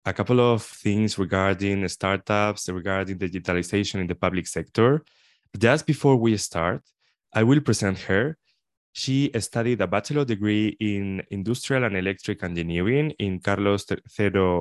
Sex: male